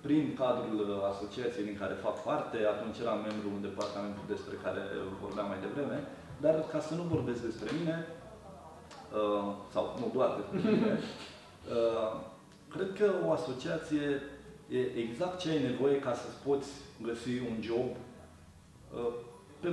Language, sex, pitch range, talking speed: Romanian, male, 115-155 Hz, 145 wpm